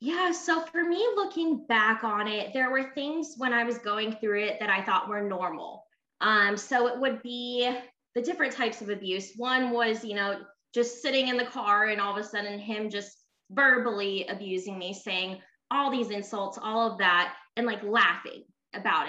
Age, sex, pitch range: 20-39, female, 195-240 Hz